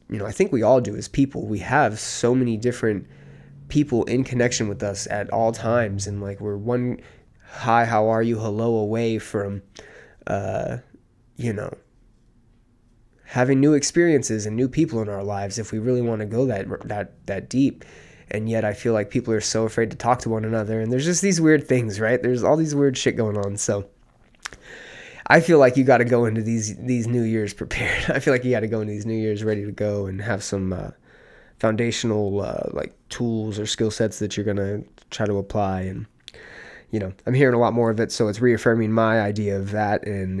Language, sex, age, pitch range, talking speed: English, male, 20-39, 105-120 Hz, 215 wpm